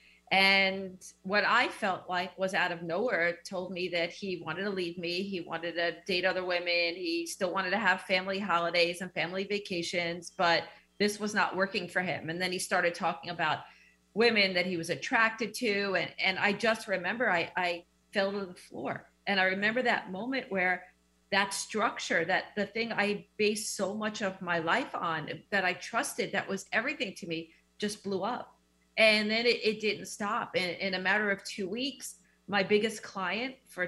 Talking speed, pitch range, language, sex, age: 195 wpm, 180-210 Hz, English, female, 40-59